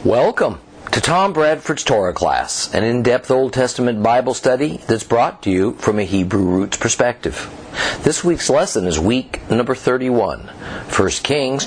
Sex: male